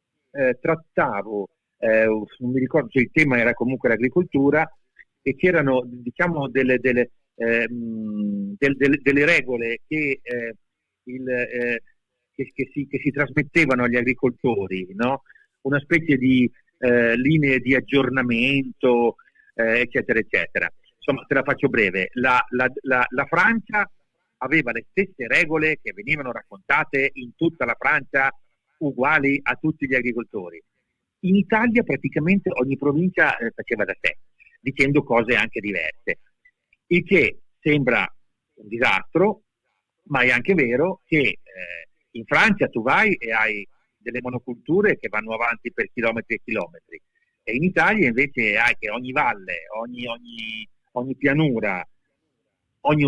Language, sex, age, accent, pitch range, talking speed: Italian, male, 50-69, native, 120-150 Hz, 125 wpm